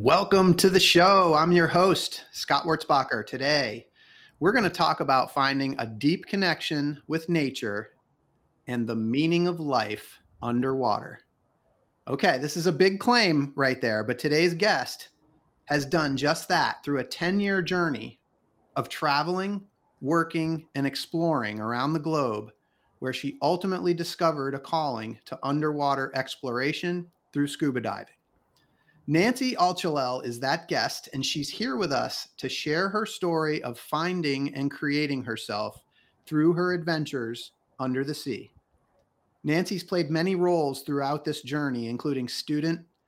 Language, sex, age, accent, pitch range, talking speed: English, male, 30-49, American, 135-170 Hz, 140 wpm